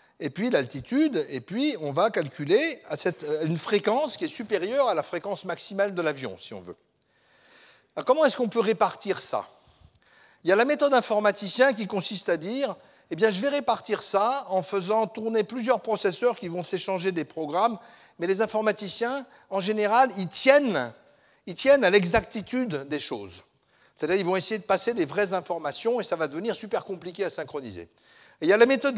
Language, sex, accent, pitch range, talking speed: French, male, French, 175-245 Hz, 195 wpm